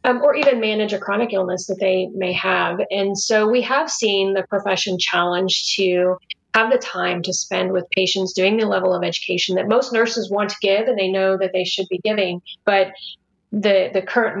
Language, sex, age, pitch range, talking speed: English, female, 30-49, 185-215 Hz, 210 wpm